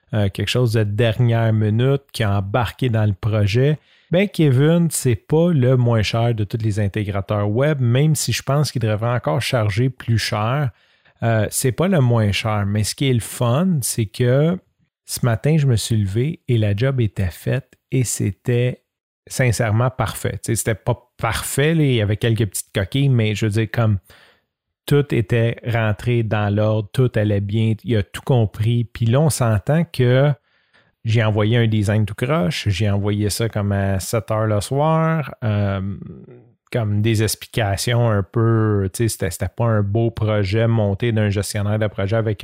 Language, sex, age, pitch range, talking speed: French, male, 30-49, 105-125 Hz, 185 wpm